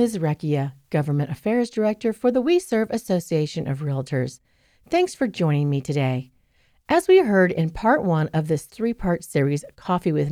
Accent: American